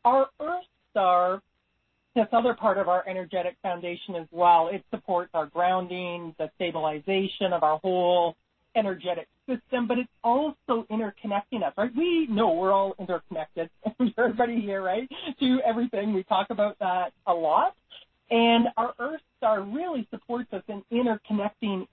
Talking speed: 150 wpm